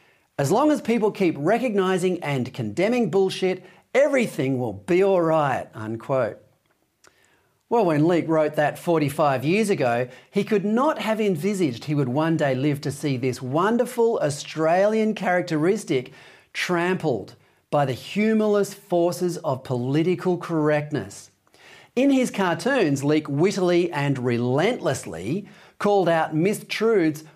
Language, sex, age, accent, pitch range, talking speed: English, male, 40-59, Australian, 145-210 Hz, 125 wpm